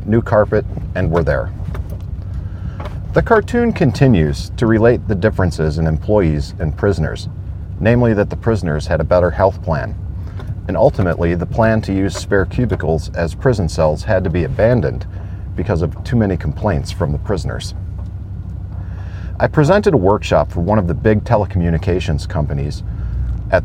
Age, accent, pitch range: 40-59, American, 80-105 Hz